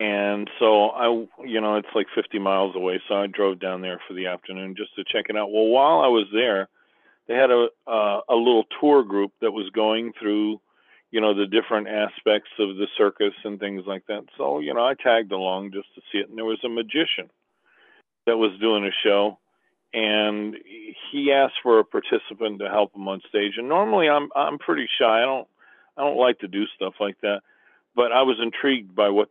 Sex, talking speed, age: male, 215 wpm, 40-59